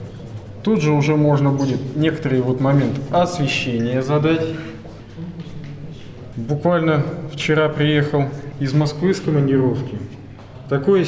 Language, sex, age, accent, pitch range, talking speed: Russian, male, 20-39, native, 125-150 Hz, 90 wpm